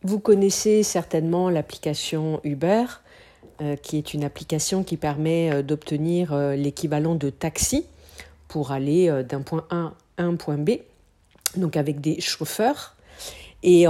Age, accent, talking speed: 50-69, French, 145 wpm